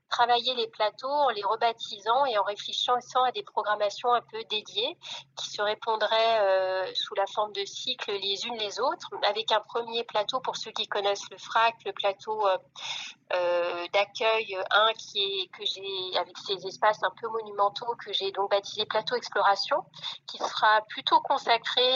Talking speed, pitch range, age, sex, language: 165 wpm, 195-245 Hz, 30-49, female, French